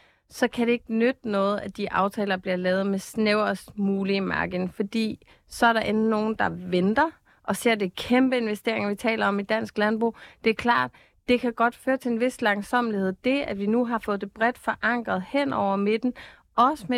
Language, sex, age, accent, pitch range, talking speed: Danish, female, 30-49, native, 205-240 Hz, 210 wpm